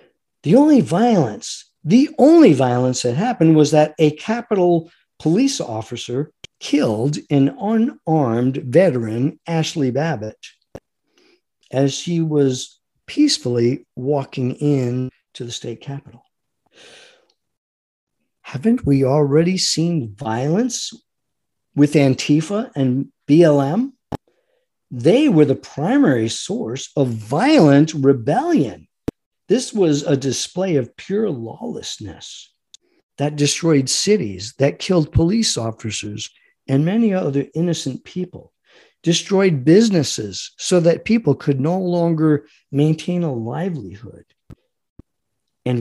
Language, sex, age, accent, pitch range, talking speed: English, male, 50-69, American, 135-205 Hz, 100 wpm